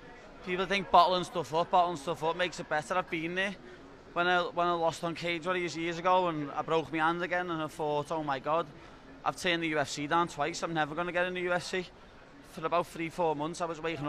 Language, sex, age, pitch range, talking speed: English, male, 20-39, 155-180 Hz, 245 wpm